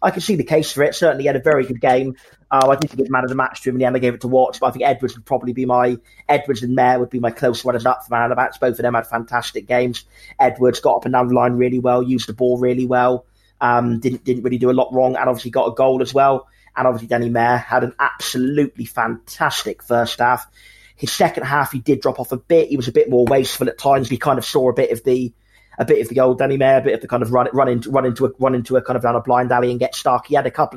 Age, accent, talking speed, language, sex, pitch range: 20-39, British, 310 wpm, English, male, 120-135 Hz